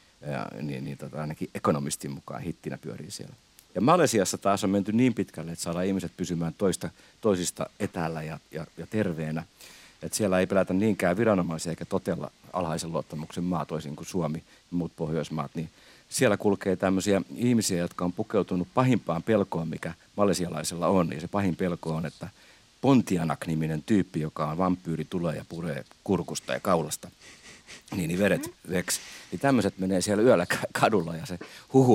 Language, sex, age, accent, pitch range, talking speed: Finnish, male, 50-69, native, 80-100 Hz, 165 wpm